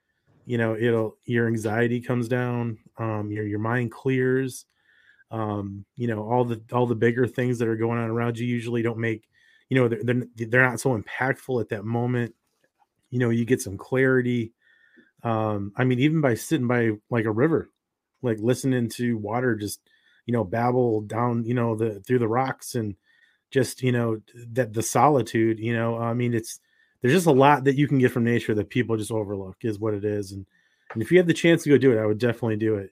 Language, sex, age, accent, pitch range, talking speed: English, male, 30-49, American, 115-130 Hz, 215 wpm